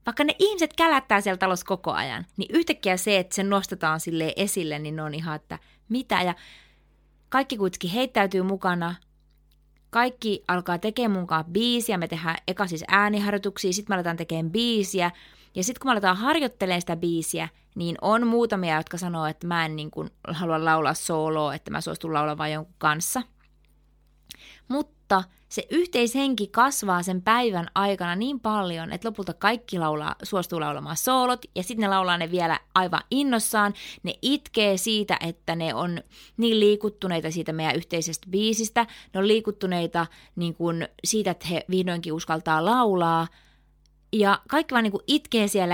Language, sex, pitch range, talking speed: Finnish, female, 170-220 Hz, 160 wpm